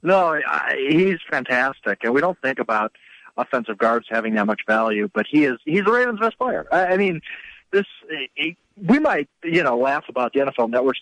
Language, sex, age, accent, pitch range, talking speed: English, male, 50-69, American, 115-175 Hz, 175 wpm